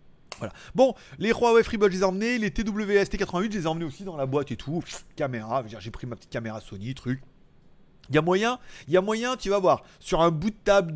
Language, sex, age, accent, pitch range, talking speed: French, male, 30-49, French, 130-205 Hz, 250 wpm